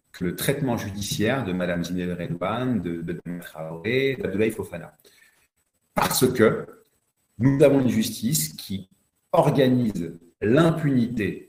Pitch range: 100-135 Hz